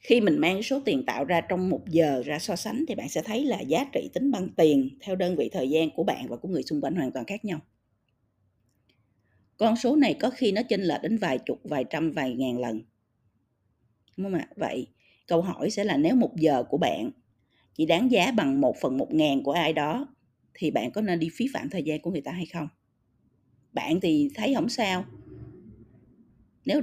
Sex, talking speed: female, 220 wpm